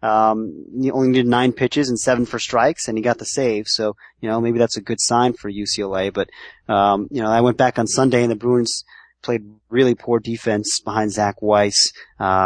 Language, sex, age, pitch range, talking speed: English, male, 30-49, 105-125 Hz, 215 wpm